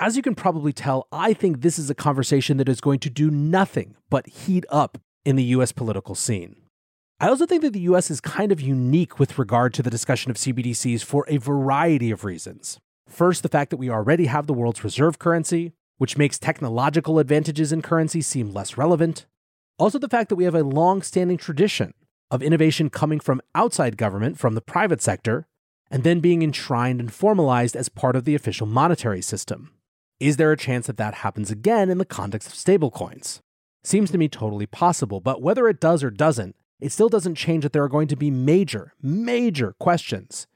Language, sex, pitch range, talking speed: English, male, 125-165 Hz, 200 wpm